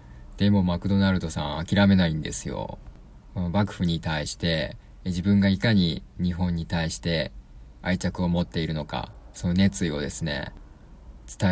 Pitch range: 80-100 Hz